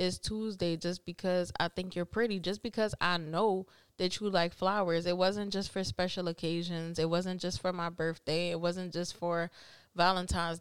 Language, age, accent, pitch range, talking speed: English, 20-39, American, 165-185 Hz, 185 wpm